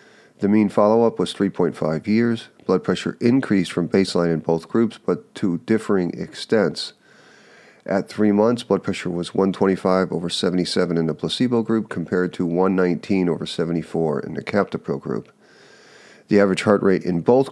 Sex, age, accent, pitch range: male, 40-59, American, 90-115 Hz